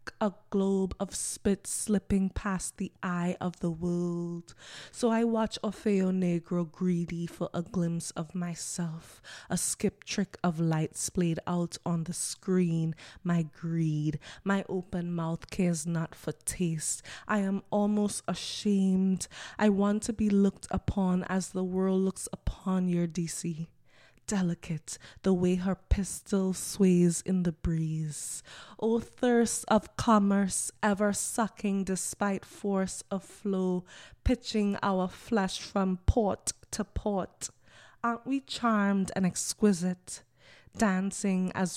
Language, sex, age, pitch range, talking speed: English, female, 20-39, 170-200 Hz, 130 wpm